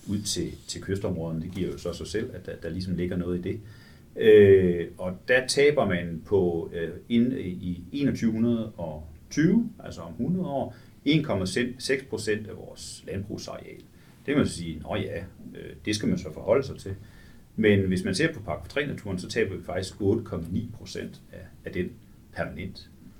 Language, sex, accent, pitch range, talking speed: Danish, male, native, 85-115 Hz, 170 wpm